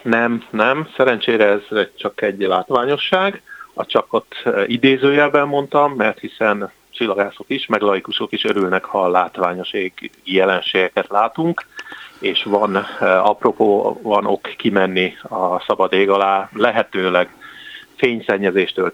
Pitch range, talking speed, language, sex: 115-155 Hz, 115 wpm, Hungarian, male